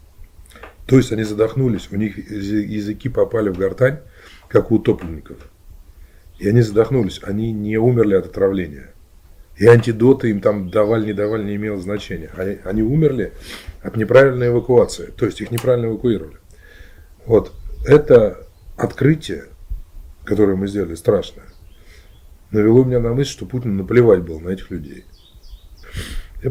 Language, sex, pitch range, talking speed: Russian, male, 85-120 Hz, 140 wpm